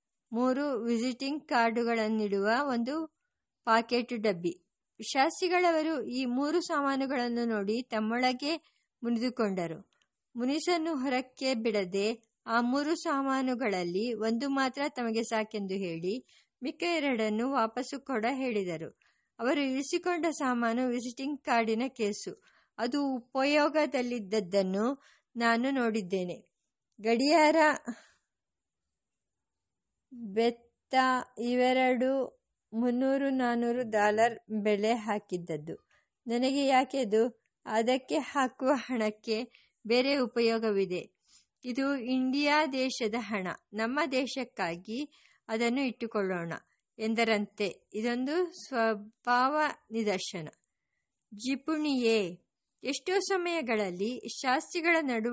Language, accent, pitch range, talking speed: English, Indian, 220-270 Hz, 80 wpm